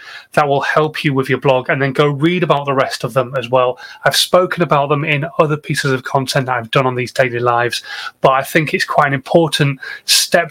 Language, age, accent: English, 30-49, British